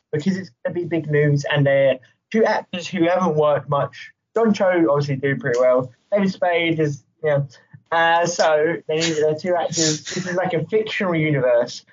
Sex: male